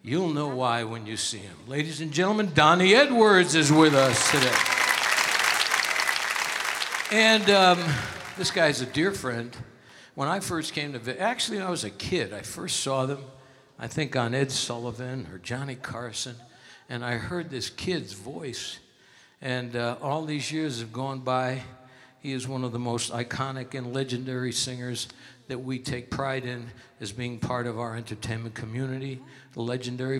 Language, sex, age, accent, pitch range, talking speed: English, male, 60-79, American, 120-155 Hz, 165 wpm